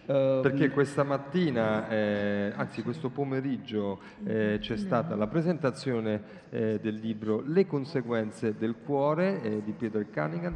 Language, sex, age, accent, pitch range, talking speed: Italian, male, 40-59, native, 100-125 Hz, 130 wpm